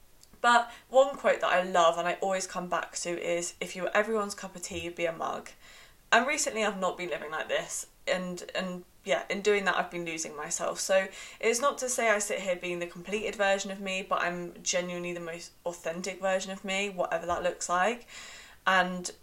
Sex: female